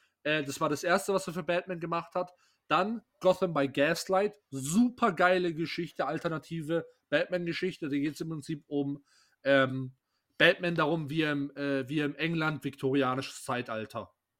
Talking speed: 150 wpm